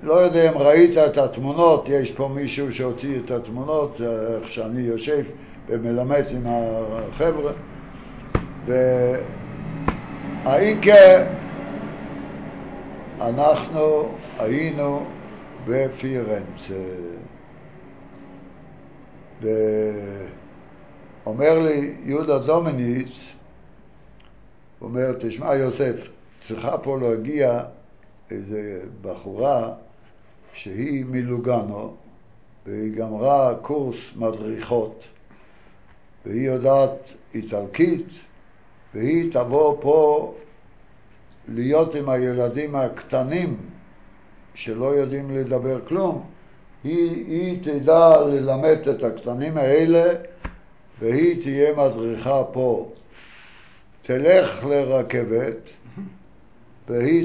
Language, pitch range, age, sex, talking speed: Hebrew, 115-150 Hz, 60-79, male, 70 wpm